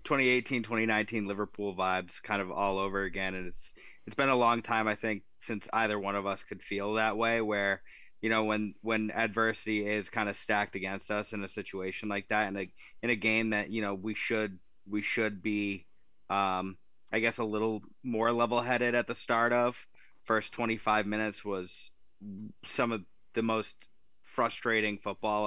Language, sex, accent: English, male, American